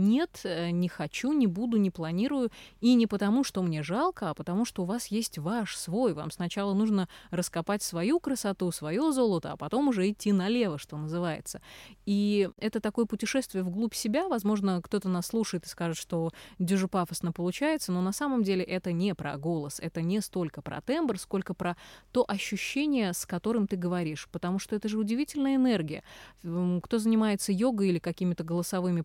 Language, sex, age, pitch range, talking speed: Russian, female, 20-39, 170-215 Hz, 175 wpm